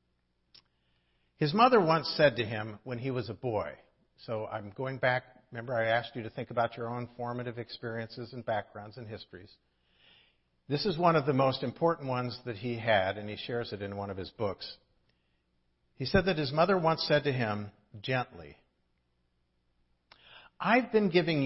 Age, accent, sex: 50-69, American, male